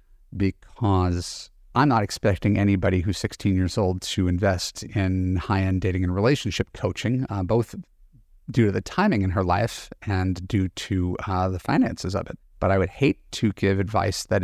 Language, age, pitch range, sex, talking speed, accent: English, 40-59, 95-120 Hz, male, 175 wpm, American